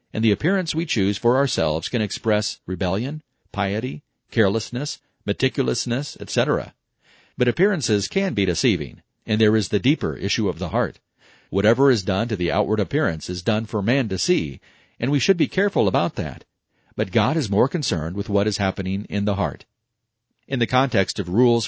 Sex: male